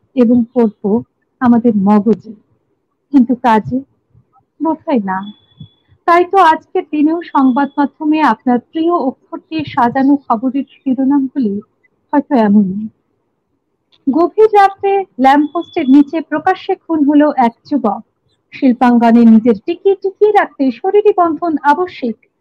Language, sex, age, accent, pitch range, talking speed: English, female, 50-69, Indian, 260-370 Hz, 95 wpm